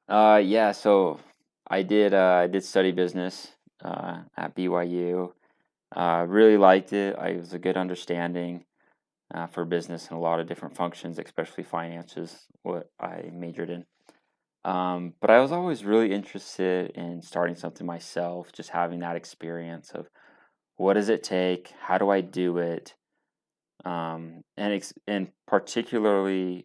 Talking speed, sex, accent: 155 wpm, male, American